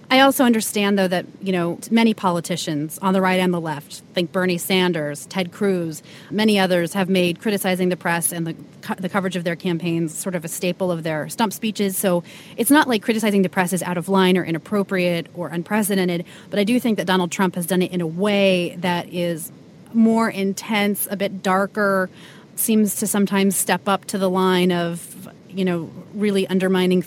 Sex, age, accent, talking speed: female, 30-49, American, 200 wpm